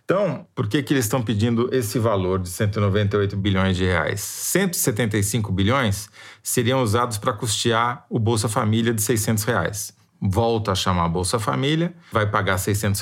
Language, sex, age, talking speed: Portuguese, male, 40-59, 160 wpm